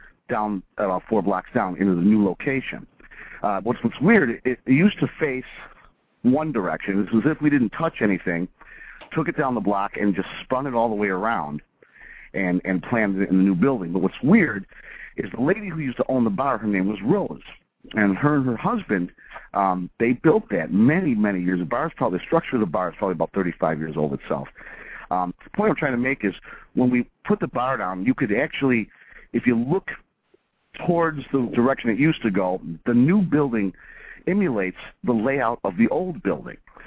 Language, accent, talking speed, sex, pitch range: English, American, 205 wpm, male, 95-135 Hz